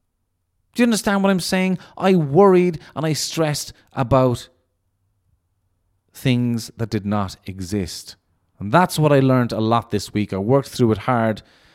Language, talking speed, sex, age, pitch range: English, 160 wpm, male, 30-49, 90-120 Hz